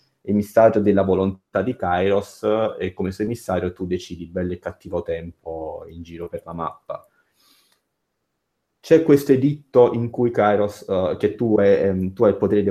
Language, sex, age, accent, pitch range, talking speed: Italian, male, 30-49, native, 90-105 Hz, 170 wpm